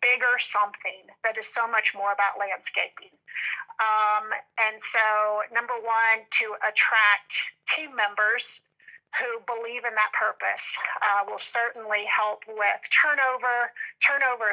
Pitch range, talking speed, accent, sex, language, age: 210-250 Hz, 125 wpm, American, female, English, 40-59